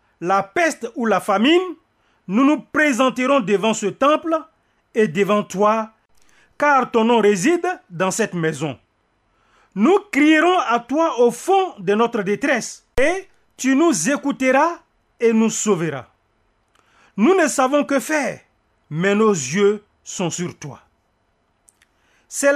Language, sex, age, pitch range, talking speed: French, male, 40-59, 190-295 Hz, 130 wpm